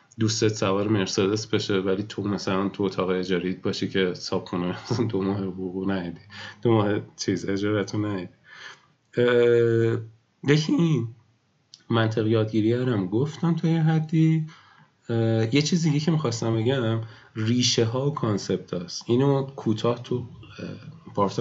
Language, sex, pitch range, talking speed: Persian, male, 100-130 Hz, 120 wpm